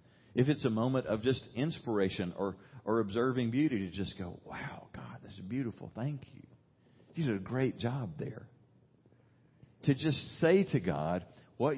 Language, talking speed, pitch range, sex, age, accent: English, 170 wpm, 100-125 Hz, male, 40-59, American